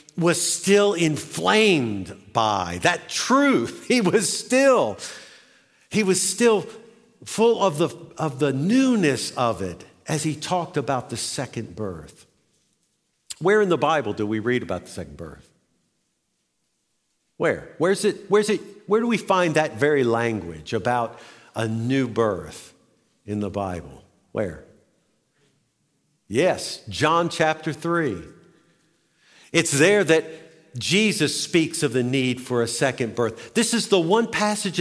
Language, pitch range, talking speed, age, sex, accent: English, 135-210 Hz, 135 wpm, 50-69, male, American